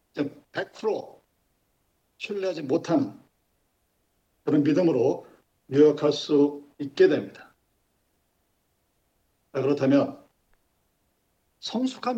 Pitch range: 150-225 Hz